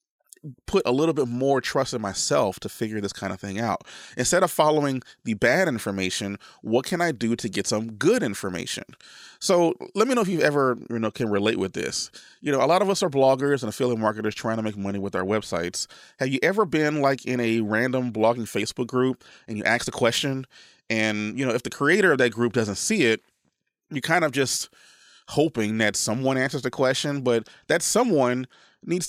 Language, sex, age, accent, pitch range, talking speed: English, male, 30-49, American, 110-145 Hz, 215 wpm